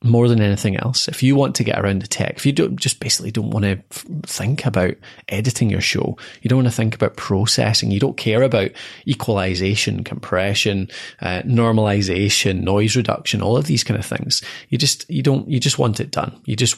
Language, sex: English, male